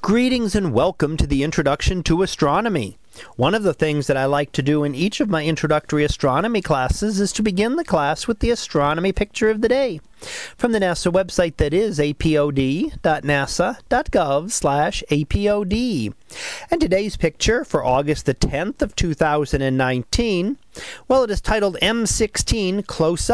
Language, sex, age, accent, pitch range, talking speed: English, male, 40-59, American, 155-215 Hz, 150 wpm